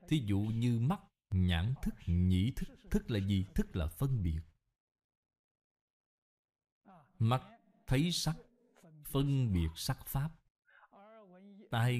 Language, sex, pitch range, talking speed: Vietnamese, male, 100-150 Hz, 115 wpm